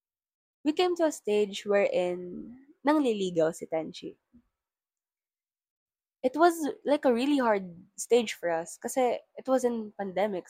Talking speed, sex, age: 130 wpm, female, 20-39